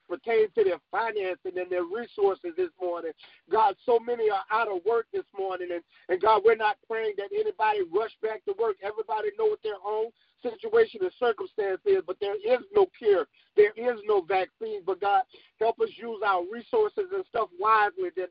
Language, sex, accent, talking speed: English, male, American, 195 wpm